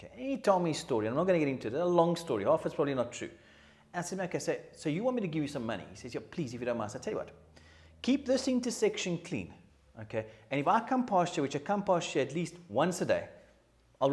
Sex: male